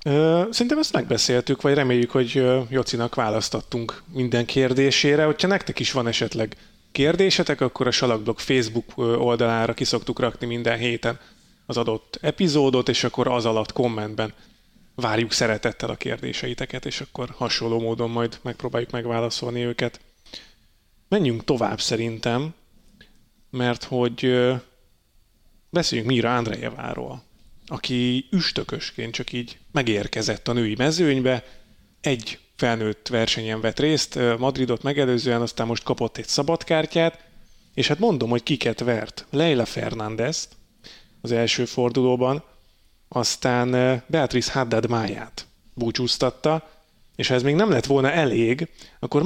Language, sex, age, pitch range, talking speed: Hungarian, male, 30-49, 115-140 Hz, 120 wpm